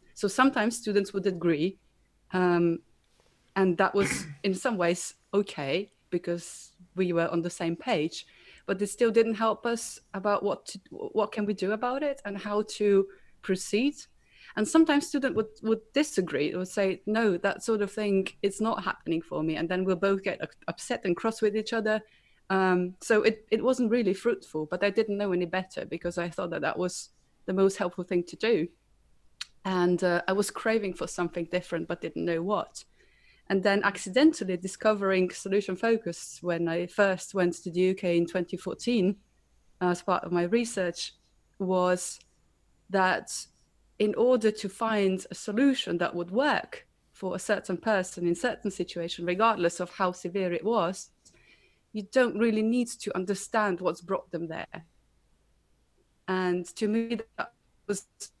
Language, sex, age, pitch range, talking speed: English, female, 30-49, 180-220 Hz, 170 wpm